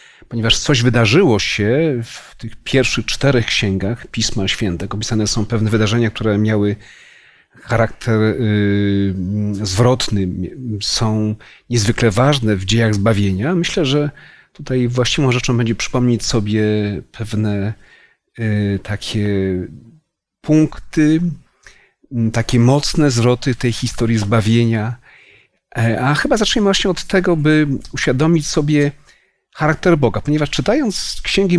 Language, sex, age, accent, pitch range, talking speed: Polish, male, 40-59, native, 110-135 Hz, 105 wpm